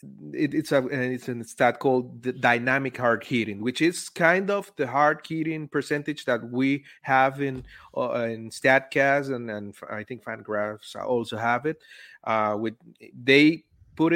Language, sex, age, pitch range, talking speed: English, male, 30-49, 115-140 Hz, 165 wpm